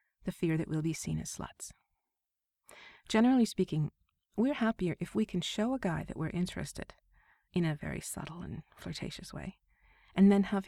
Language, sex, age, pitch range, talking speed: English, female, 30-49, 165-205 Hz, 170 wpm